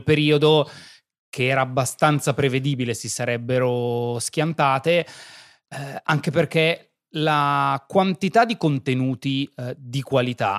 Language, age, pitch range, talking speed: Italian, 30-49, 130-165 Hz, 100 wpm